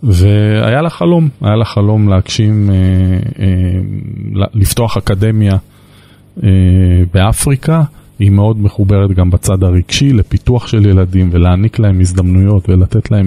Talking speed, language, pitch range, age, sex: 120 wpm, Hebrew, 95-115 Hz, 20-39, male